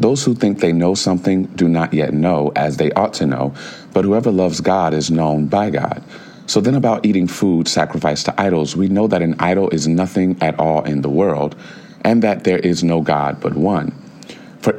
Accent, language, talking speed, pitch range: American, English, 210 wpm, 75-90 Hz